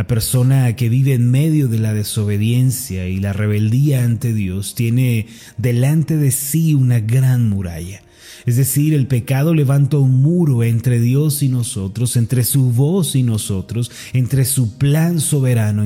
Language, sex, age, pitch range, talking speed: Spanish, male, 30-49, 110-135 Hz, 155 wpm